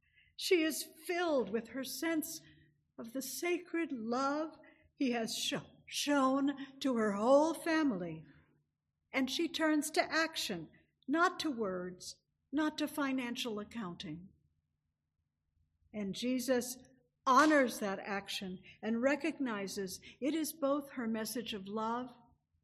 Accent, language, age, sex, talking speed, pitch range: American, English, 60-79, female, 115 wpm, 190-285 Hz